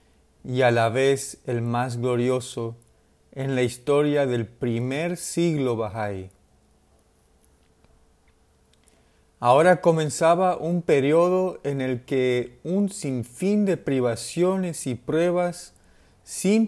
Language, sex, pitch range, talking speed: Spanish, male, 90-145 Hz, 100 wpm